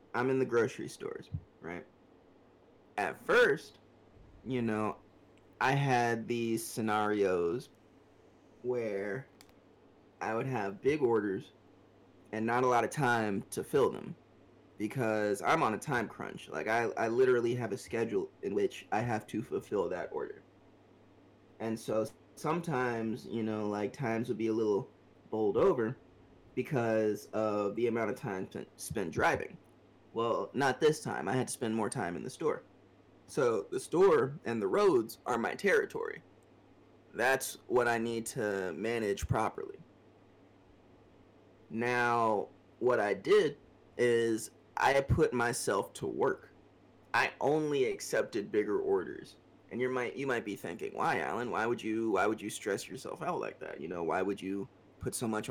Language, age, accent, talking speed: English, 20-39, American, 155 wpm